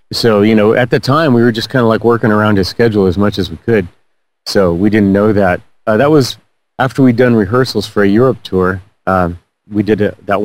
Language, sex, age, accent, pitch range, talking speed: English, male, 30-49, American, 95-115 Hz, 235 wpm